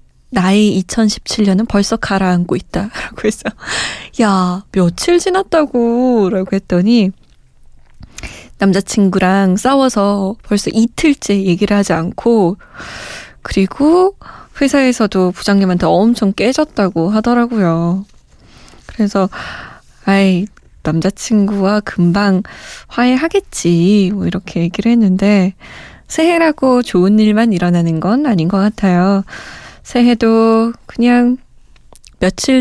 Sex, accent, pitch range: female, native, 185-245 Hz